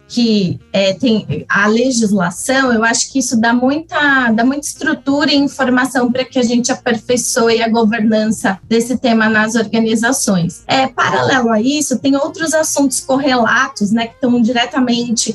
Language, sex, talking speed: Portuguese, female, 155 wpm